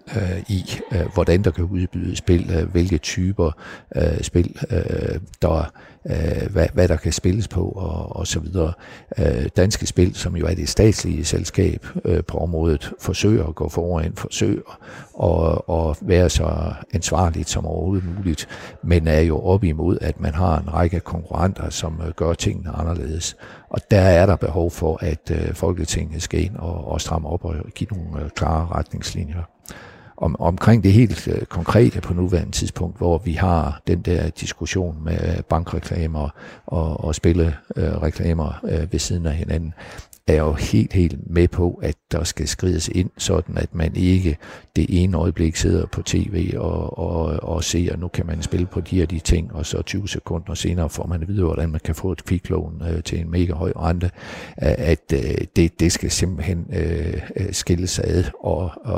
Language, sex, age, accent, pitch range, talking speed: Danish, male, 60-79, native, 80-95 Hz, 165 wpm